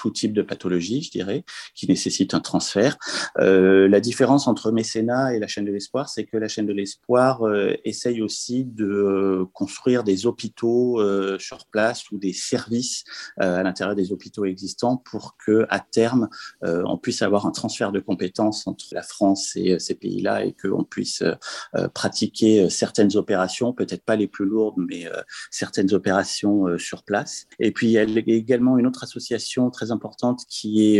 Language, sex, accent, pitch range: French, male, French, 100-120 Hz